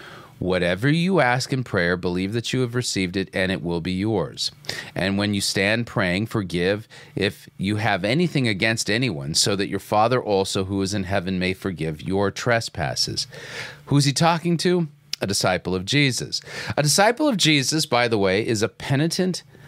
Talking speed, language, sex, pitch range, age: 185 wpm, English, male, 95-140 Hz, 40-59